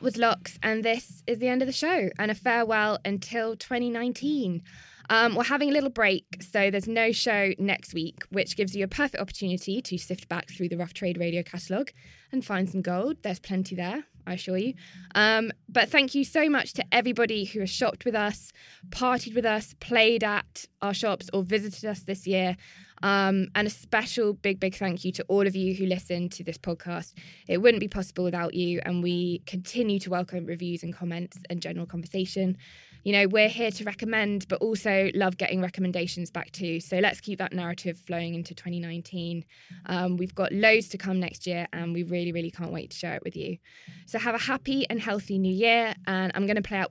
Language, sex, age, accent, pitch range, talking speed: English, female, 20-39, British, 180-220 Hz, 210 wpm